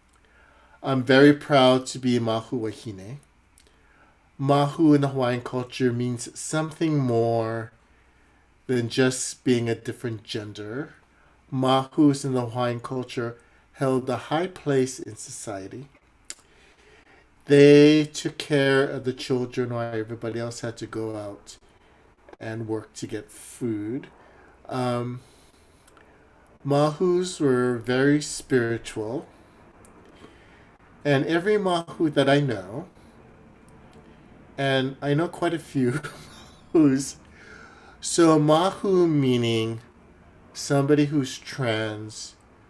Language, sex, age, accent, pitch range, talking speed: English, male, 50-69, American, 115-145 Hz, 105 wpm